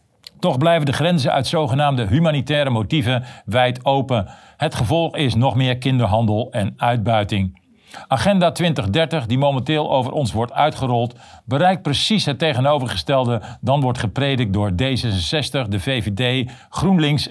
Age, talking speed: 50-69, 130 wpm